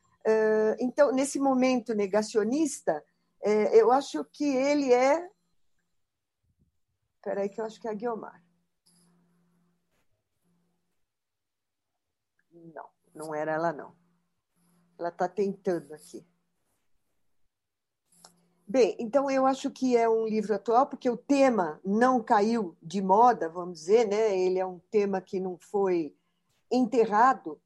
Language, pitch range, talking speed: Portuguese, 175-255 Hz, 115 wpm